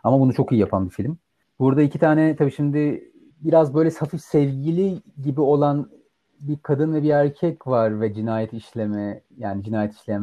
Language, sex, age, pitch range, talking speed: Turkish, male, 30-49, 120-155 Hz, 175 wpm